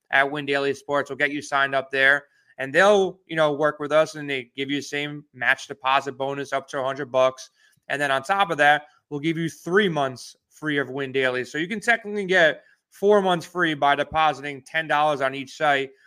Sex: male